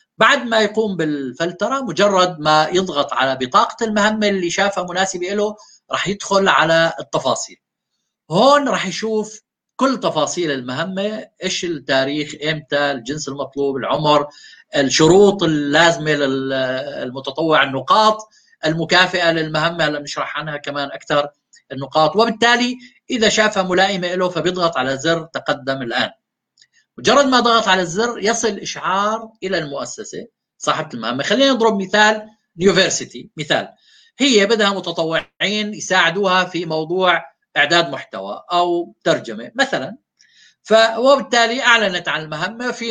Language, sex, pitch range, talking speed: Arabic, male, 150-210 Hz, 115 wpm